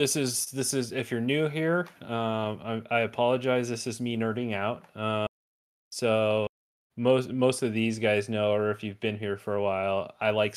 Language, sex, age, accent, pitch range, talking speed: English, male, 30-49, American, 105-125 Hz, 200 wpm